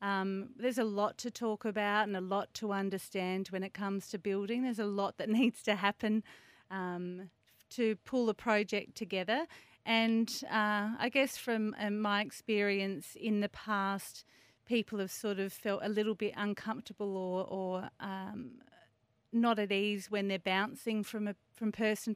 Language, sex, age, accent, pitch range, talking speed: English, female, 30-49, Australian, 190-225 Hz, 170 wpm